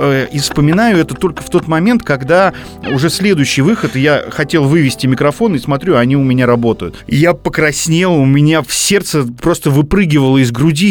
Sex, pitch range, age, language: male, 120-160 Hz, 30-49, Russian